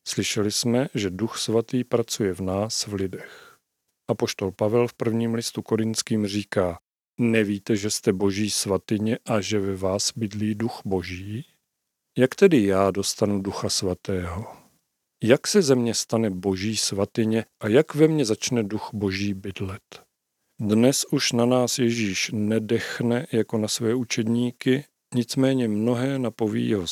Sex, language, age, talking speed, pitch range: male, Czech, 40-59, 145 wpm, 100-120 Hz